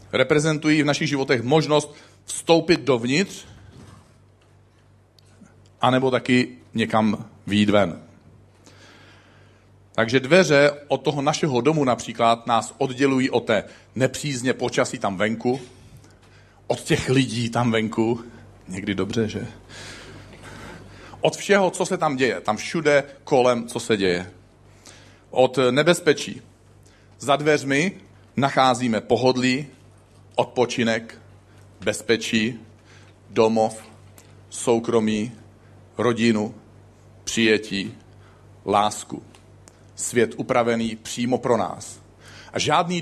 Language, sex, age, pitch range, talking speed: Czech, male, 40-59, 100-130 Hz, 90 wpm